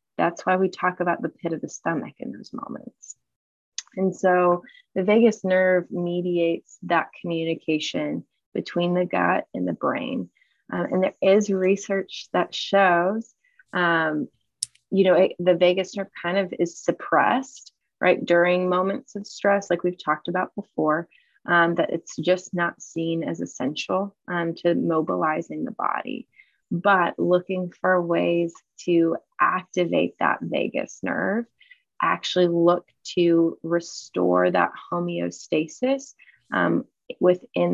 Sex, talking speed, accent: female, 135 wpm, American